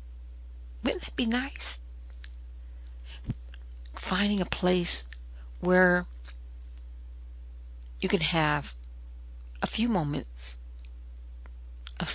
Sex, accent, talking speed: female, American, 75 wpm